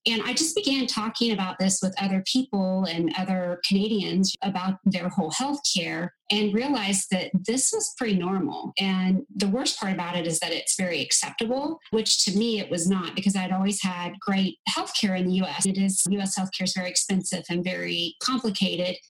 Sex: female